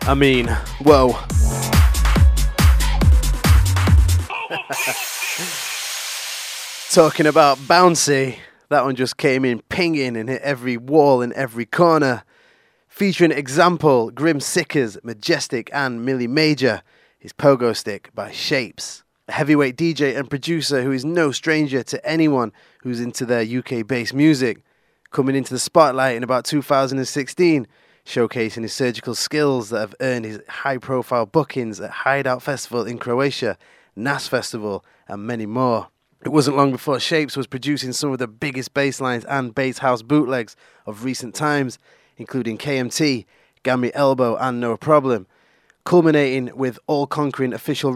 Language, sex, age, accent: English, male, 20-39, British